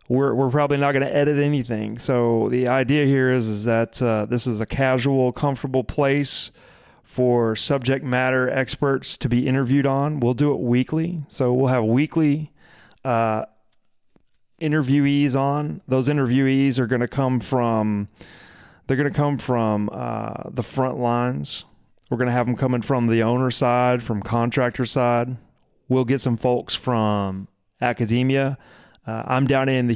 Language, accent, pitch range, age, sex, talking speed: English, American, 115-135 Hz, 30-49, male, 155 wpm